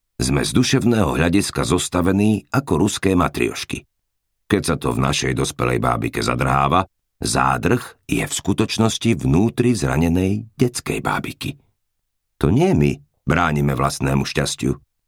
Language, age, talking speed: Slovak, 50-69, 120 wpm